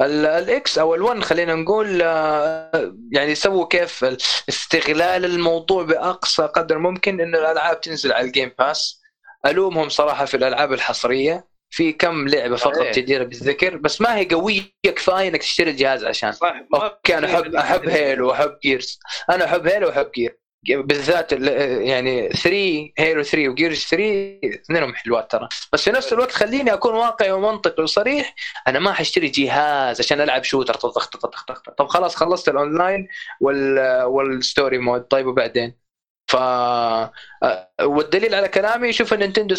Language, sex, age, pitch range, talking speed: Arabic, male, 20-39, 140-190 Hz, 140 wpm